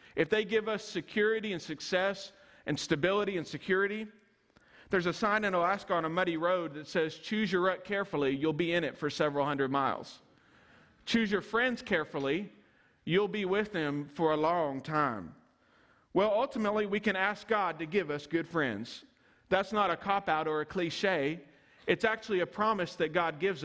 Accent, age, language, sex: American, 40-59, English, male